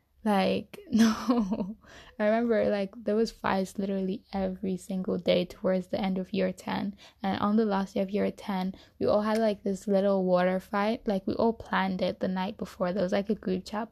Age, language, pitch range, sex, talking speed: 10-29, English, 185-215 Hz, female, 205 wpm